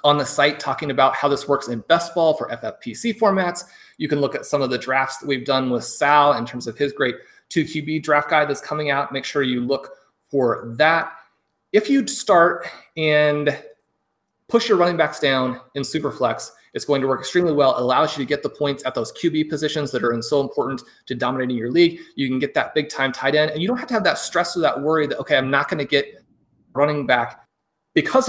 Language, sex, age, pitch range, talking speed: English, male, 30-49, 135-165 Hz, 235 wpm